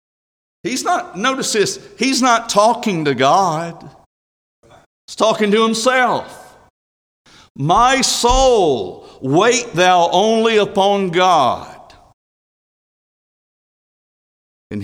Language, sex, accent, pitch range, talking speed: English, male, American, 105-165 Hz, 85 wpm